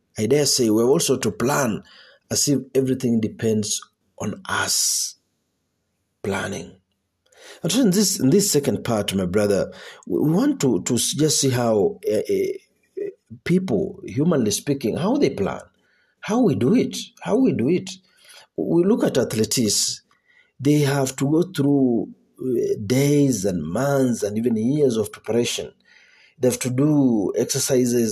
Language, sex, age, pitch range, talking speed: Swahili, male, 50-69, 110-145 Hz, 140 wpm